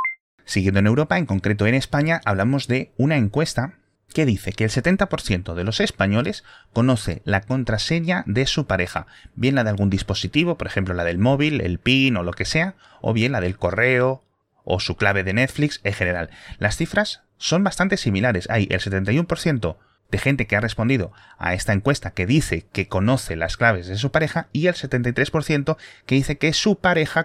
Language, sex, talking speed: Spanish, male, 190 wpm